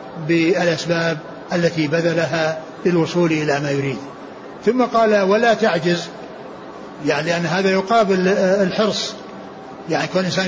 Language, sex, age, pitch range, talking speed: Arabic, male, 60-79, 170-215 Hz, 110 wpm